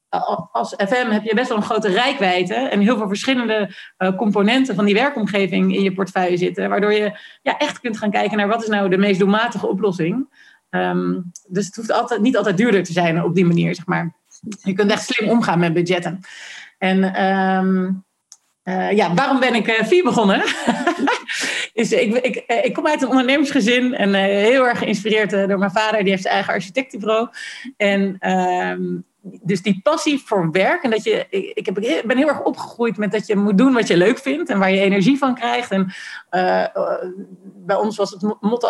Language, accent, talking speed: Dutch, Dutch, 195 wpm